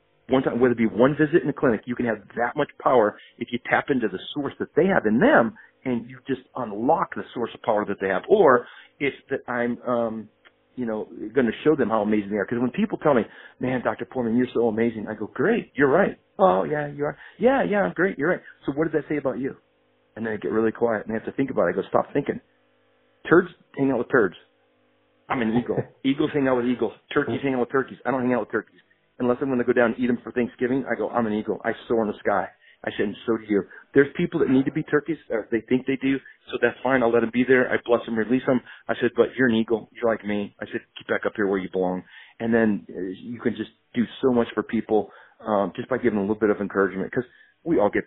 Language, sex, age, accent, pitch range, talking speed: English, male, 40-59, American, 110-135 Hz, 275 wpm